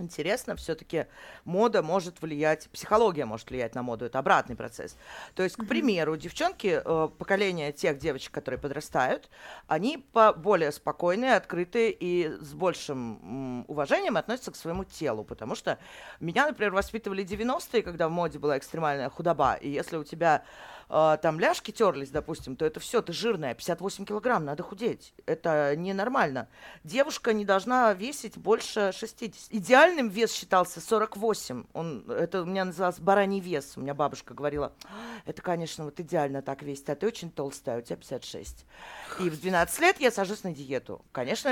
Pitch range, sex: 155-220 Hz, female